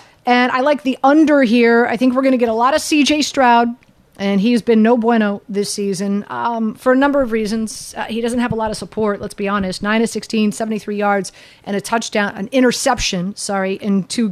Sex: female